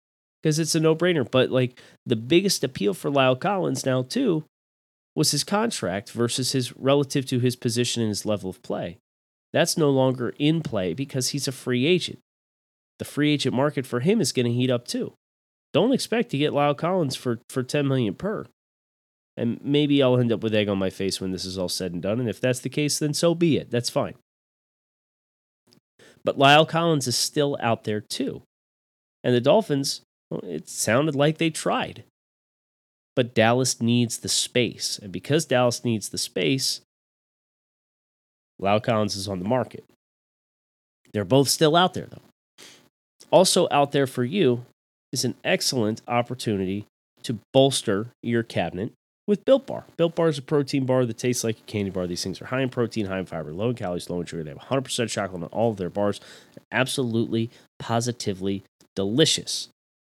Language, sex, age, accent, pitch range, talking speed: English, male, 30-49, American, 110-145 Hz, 185 wpm